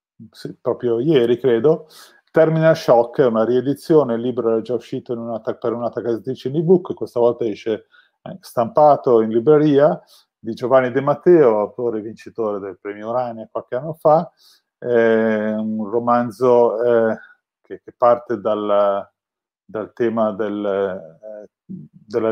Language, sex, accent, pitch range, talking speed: Italian, male, native, 110-130 Hz, 140 wpm